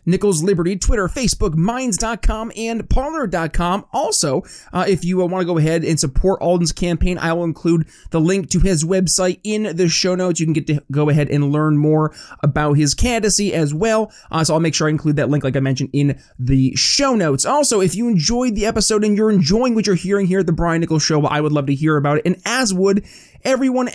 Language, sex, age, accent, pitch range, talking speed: English, male, 20-39, American, 155-210 Hz, 225 wpm